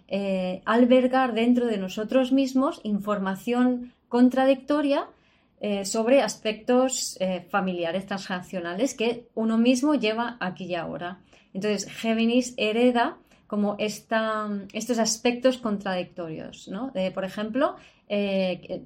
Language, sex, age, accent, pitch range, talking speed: Spanish, female, 20-39, Spanish, 195-250 Hz, 100 wpm